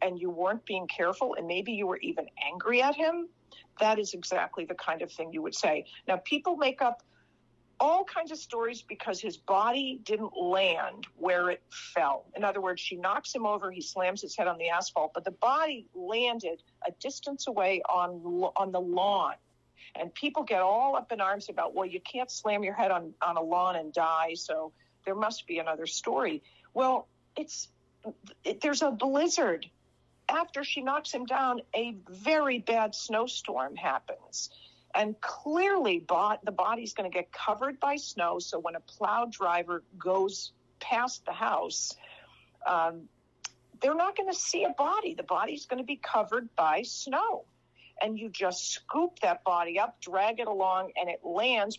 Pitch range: 180-275 Hz